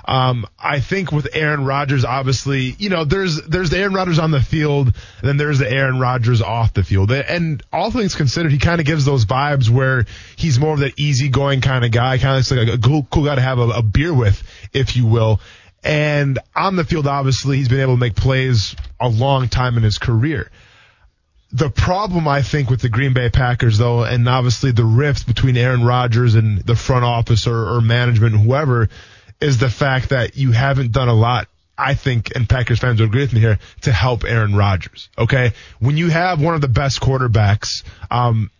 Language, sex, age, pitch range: English, male, 20-39, 115-140 Hz